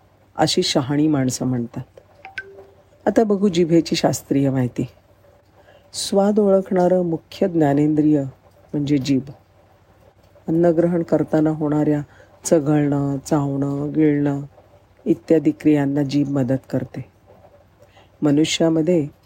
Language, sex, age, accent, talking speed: Marathi, female, 40-59, native, 85 wpm